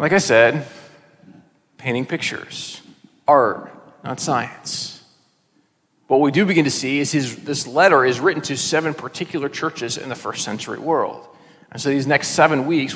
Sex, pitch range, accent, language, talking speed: male, 145-185 Hz, American, English, 160 wpm